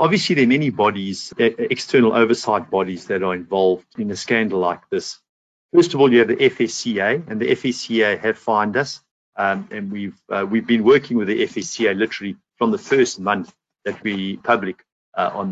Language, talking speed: English, 190 wpm